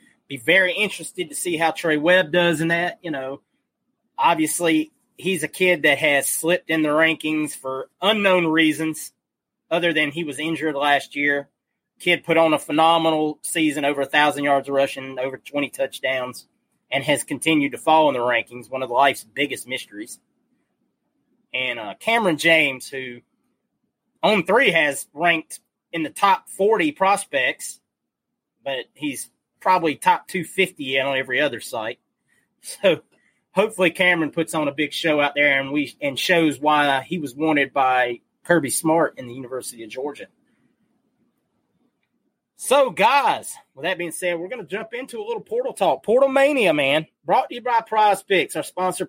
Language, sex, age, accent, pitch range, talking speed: English, male, 30-49, American, 145-200 Hz, 165 wpm